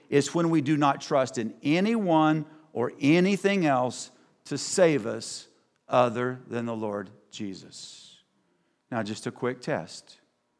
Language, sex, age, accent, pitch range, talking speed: English, male, 50-69, American, 110-145 Hz, 135 wpm